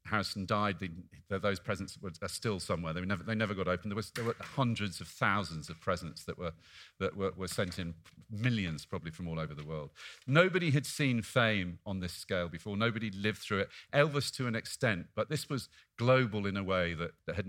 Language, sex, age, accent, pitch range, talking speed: English, male, 40-59, British, 100-130 Hz, 200 wpm